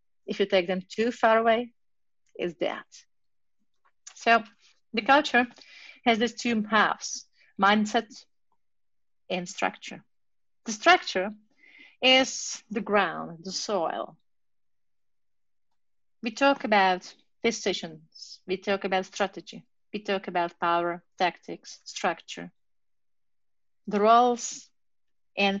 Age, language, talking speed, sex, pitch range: 40-59, English, 100 wpm, female, 195-255 Hz